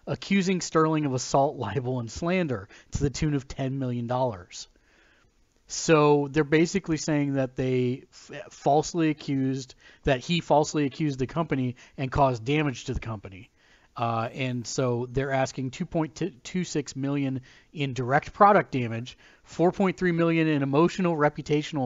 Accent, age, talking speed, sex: American, 40-59, 135 wpm, male